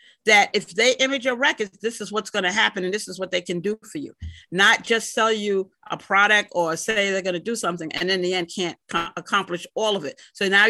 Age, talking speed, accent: 40-59, 240 wpm, American